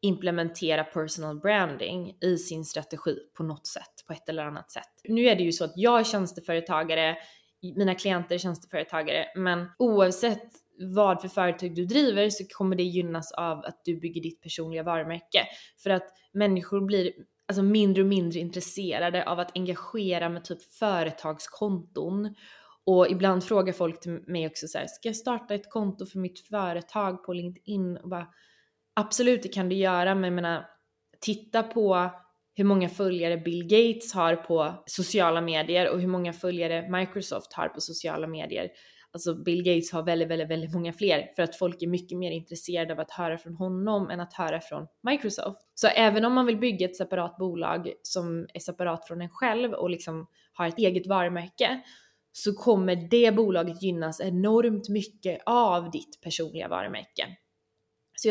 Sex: female